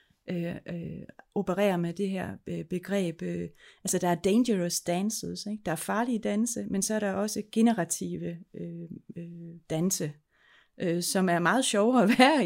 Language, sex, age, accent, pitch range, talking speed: Danish, female, 30-49, native, 175-210 Hz, 130 wpm